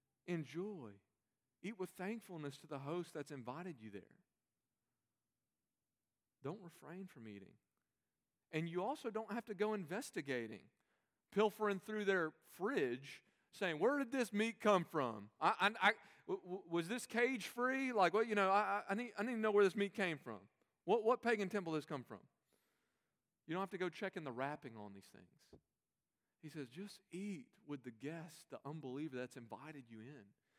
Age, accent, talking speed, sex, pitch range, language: 40-59, American, 165 wpm, male, 140-210 Hz, English